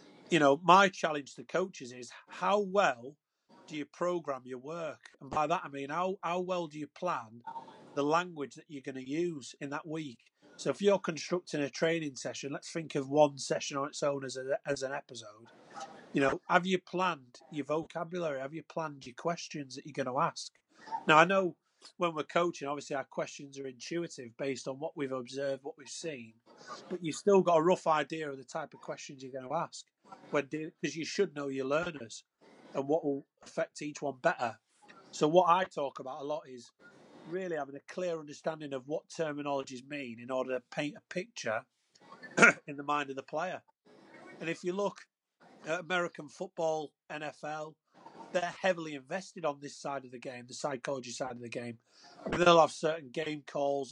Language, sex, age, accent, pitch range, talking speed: English, male, 30-49, British, 140-170 Hz, 195 wpm